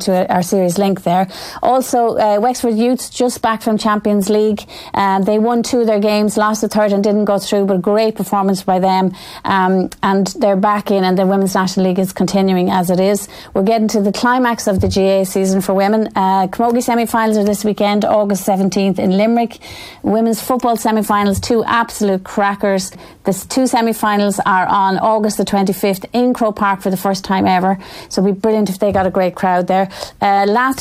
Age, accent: 30-49, Irish